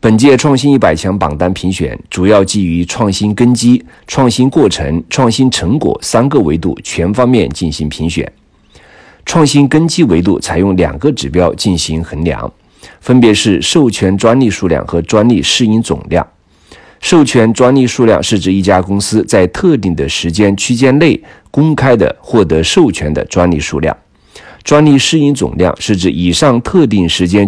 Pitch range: 85-125 Hz